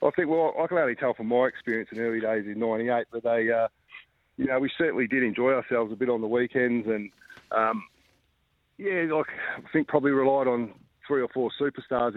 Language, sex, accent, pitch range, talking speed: English, male, Australian, 105-125 Hz, 210 wpm